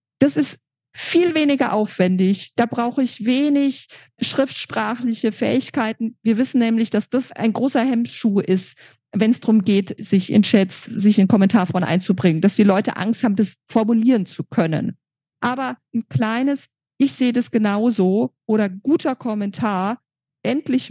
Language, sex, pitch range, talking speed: German, female, 195-245 Hz, 145 wpm